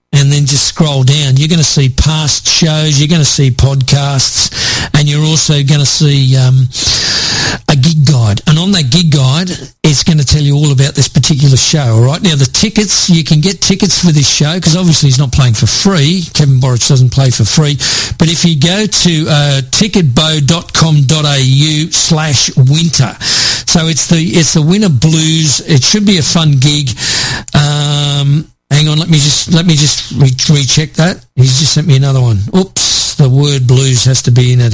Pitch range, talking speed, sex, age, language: 130-165 Hz, 195 wpm, male, 50-69, English